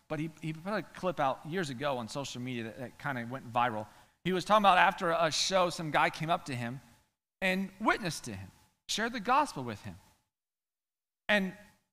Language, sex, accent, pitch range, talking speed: English, male, American, 155-210 Hz, 200 wpm